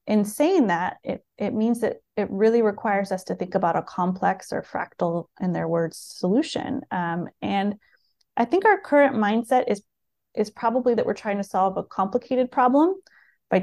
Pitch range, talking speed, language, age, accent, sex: 195-240 Hz, 180 wpm, English, 30-49, American, female